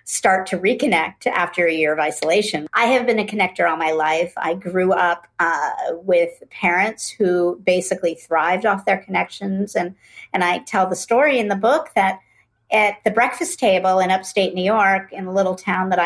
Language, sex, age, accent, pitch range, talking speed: English, female, 50-69, American, 180-220 Hz, 190 wpm